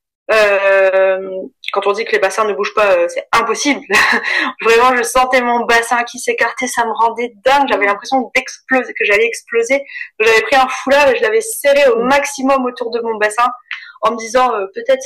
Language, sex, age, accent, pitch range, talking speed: French, female, 20-39, French, 200-270 Hz, 185 wpm